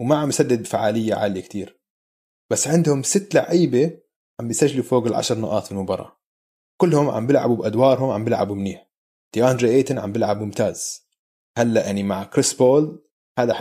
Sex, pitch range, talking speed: male, 110-145 Hz, 150 wpm